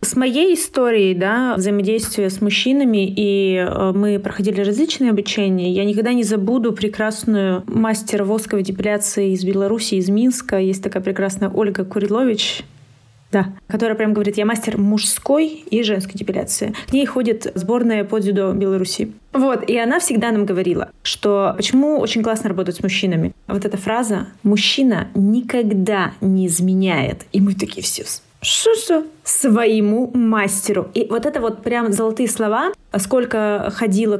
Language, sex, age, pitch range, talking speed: Russian, female, 20-39, 195-230 Hz, 140 wpm